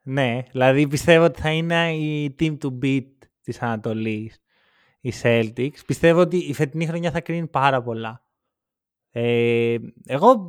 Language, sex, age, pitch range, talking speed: Greek, male, 20-39, 135-185 Hz, 145 wpm